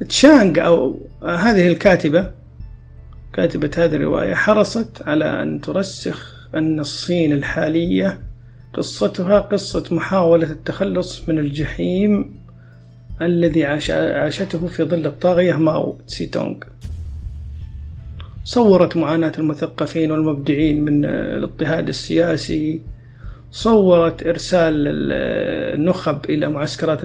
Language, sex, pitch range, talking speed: Arabic, male, 125-175 Hz, 90 wpm